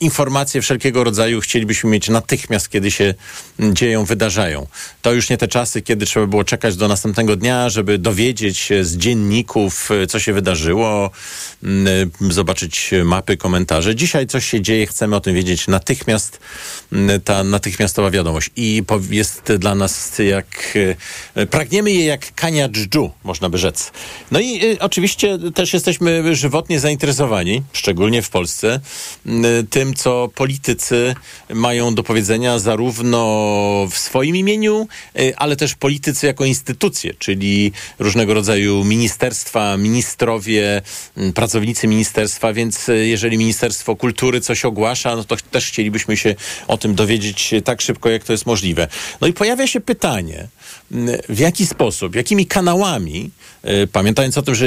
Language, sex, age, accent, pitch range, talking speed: Polish, male, 40-59, native, 100-130 Hz, 135 wpm